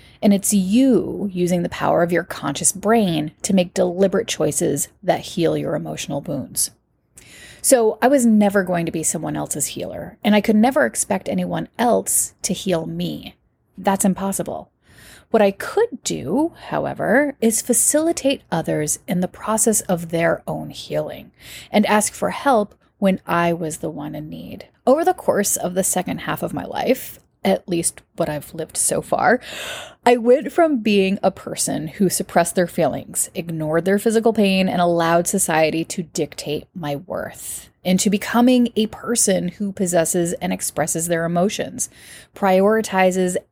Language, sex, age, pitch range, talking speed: English, female, 30-49, 170-225 Hz, 160 wpm